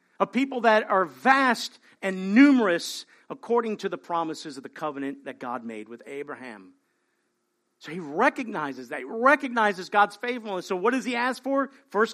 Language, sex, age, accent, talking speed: English, male, 50-69, American, 170 wpm